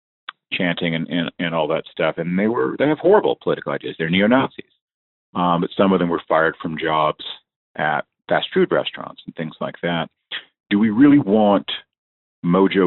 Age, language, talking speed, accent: 40-59, English, 180 wpm, American